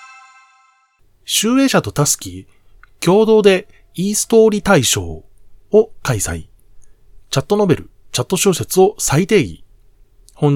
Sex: male